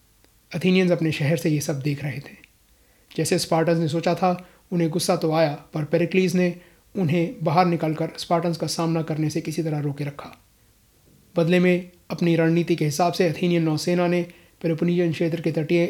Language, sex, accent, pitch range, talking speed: Hindi, male, native, 150-175 Hz, 180 wpm